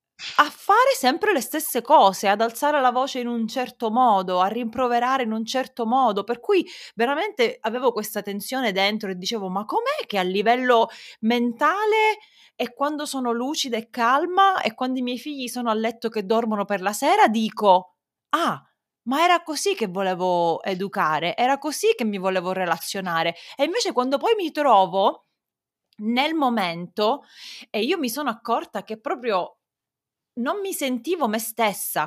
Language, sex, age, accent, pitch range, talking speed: Italian, female, 30-49, native, 205-290 Hz, 165 wpm